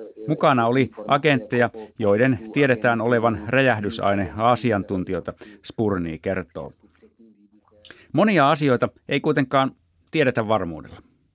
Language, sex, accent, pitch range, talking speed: Finnish, male, native, 100-135 Hz, 85 wpm